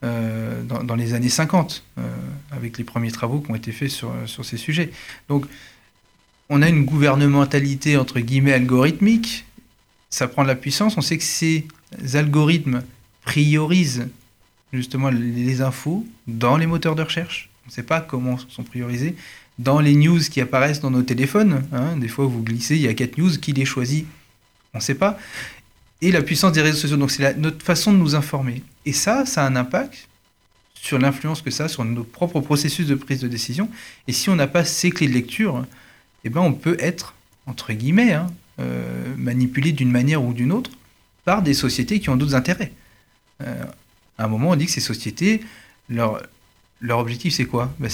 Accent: French